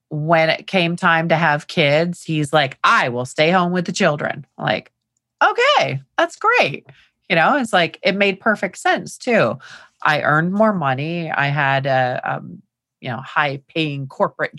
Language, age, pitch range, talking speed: English, 30-49, 135-170 Hz, 175 wpm